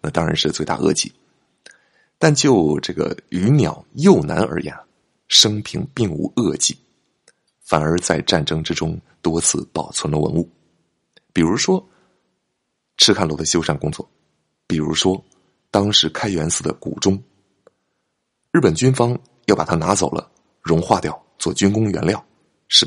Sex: male